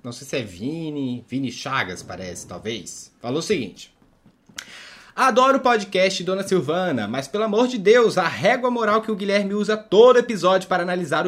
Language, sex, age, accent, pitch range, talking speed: Portuguese, male, 20-39, Brazilian, 155-230 Hz, 175 wpm